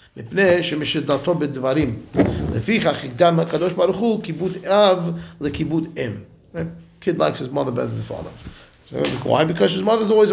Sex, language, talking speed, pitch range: male, English, 85 wpm, 145-175 Hz